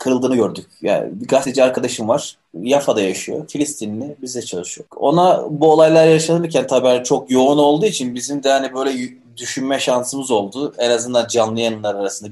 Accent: native